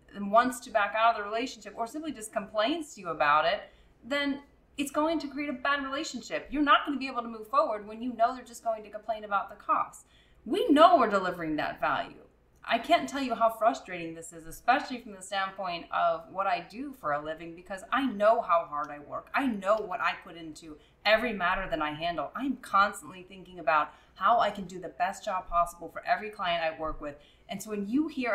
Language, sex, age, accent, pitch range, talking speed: English, female, 20-39, American, 180-255 Hz, 230 wpm